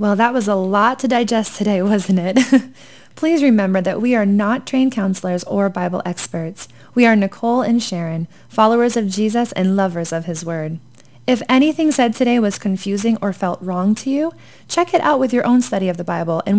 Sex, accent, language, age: female, American, English, 20-39